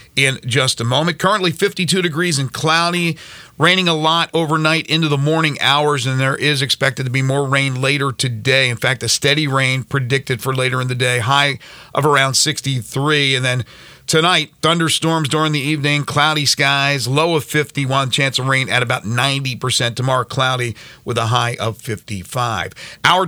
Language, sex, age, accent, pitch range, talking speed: English, male, 40-59, American, 135-160 Hz, 175 wpm